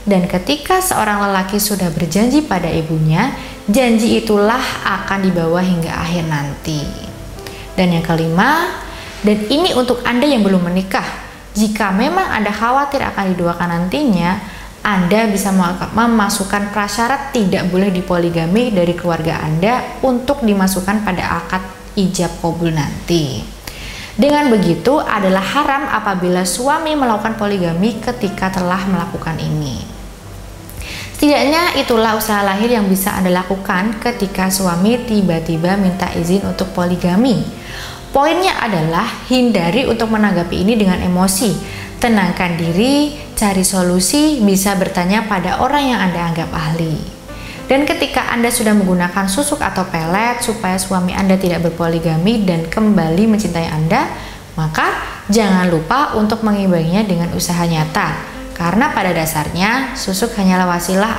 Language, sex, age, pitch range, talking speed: Indonesian, female, 20-39, 175-230 Hz, 125 wpm